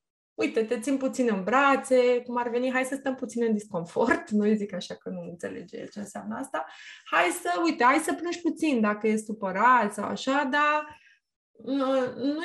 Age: 20-39